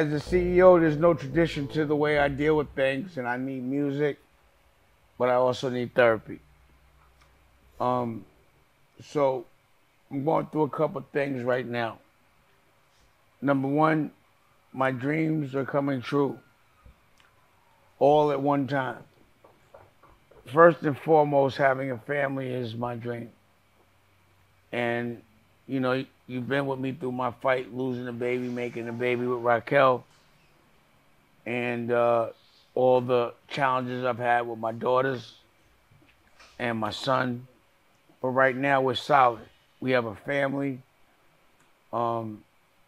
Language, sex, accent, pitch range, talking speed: English, male, American, 115-140 Hz, 130 wpm